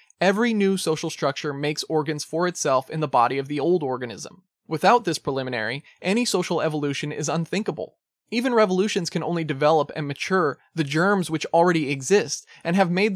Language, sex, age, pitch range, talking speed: English, male, 20-39, 145-175 Hz, 175 wpm